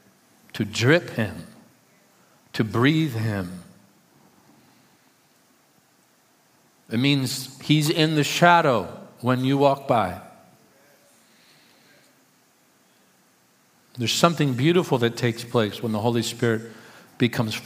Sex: male